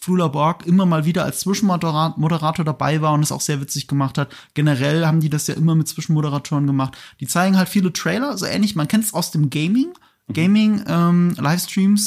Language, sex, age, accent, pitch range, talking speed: German, male, 30-49, German, 145-175 Hz, 195 wpm